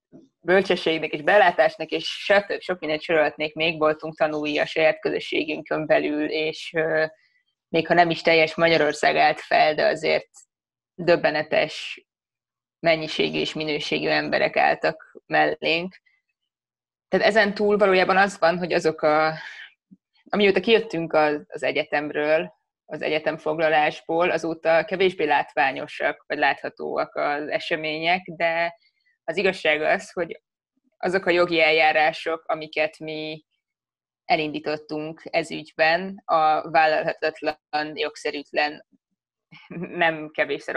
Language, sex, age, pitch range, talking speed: Hungarian, female, 20-39, 155-175 Hz, 110 wpm